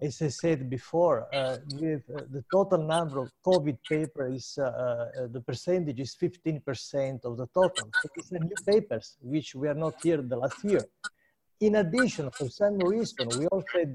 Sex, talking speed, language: male, 175 wpm, English